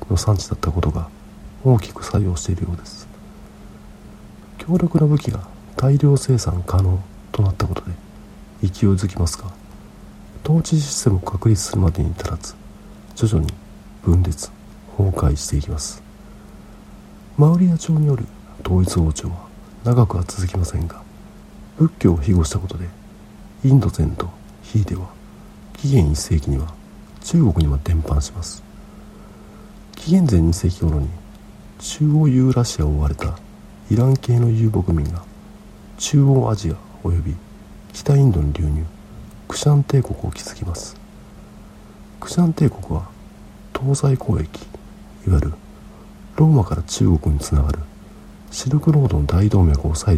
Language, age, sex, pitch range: Japanese, 50-69, male, 85-110 Hz